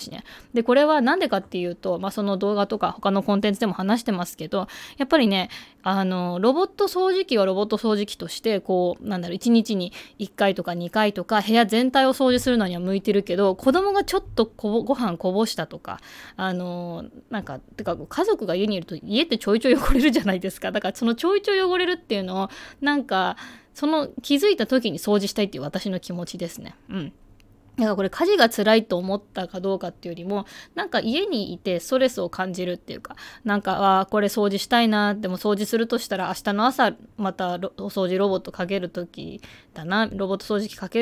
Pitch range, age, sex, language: 185-245 Hz, 20-39, female, Japanese